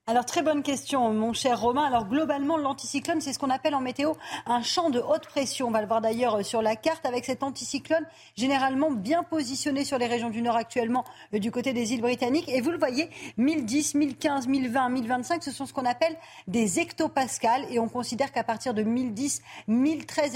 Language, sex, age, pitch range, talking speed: French, female, 40-59, 230-290 Hz, 205 wpm